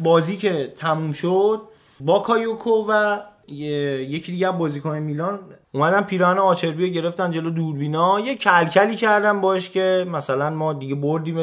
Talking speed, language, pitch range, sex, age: 145 wpm, Persian, 150-210 Hz, male, 20-39